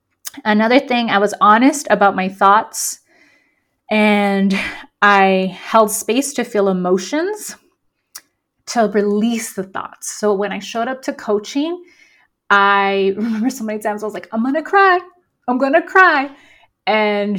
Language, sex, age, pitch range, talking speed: English, female, 30-49, 200-240 Hz, 150 wpm